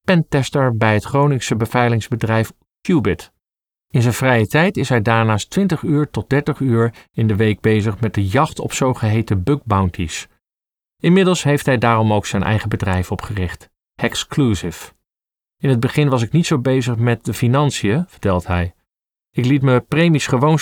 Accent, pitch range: Dutch, 110-145 Hz